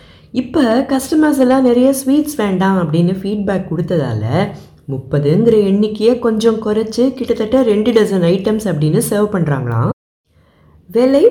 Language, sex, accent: Tamil, female, native